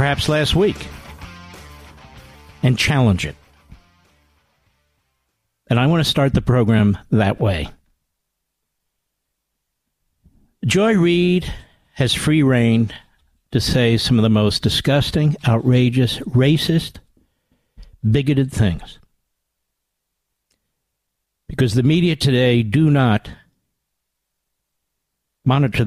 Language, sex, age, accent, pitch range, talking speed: English, male, 60-79, American, 95-140 Hz, 90 wpm